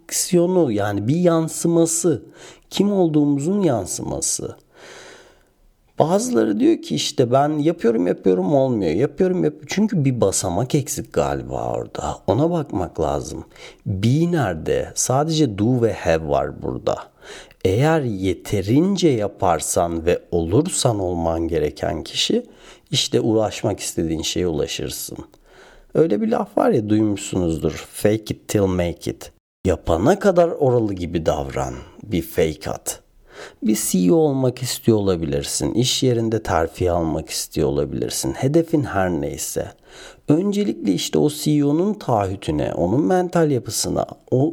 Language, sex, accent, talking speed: Turkish, male, native, 120 wpm